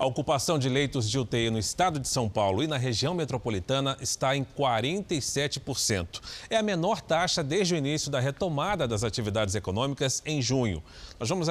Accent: Brazilian